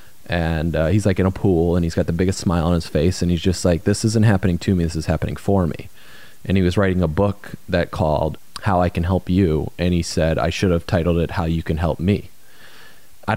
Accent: American